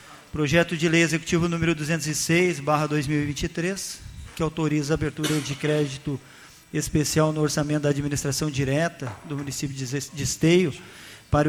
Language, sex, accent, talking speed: Portuguese, male, Brazilian, 120 wpm